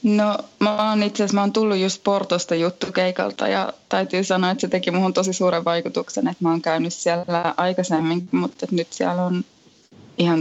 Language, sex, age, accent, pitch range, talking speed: Finnish, female, 20-39, native, 170-200 Hz, 185 wpm